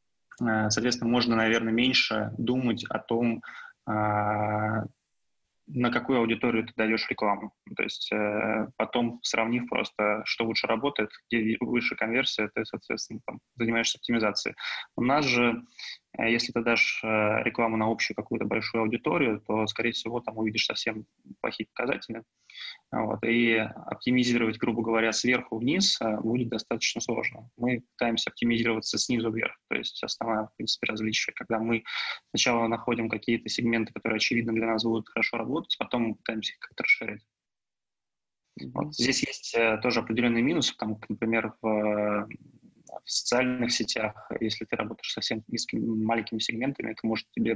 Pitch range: 110-120 Hz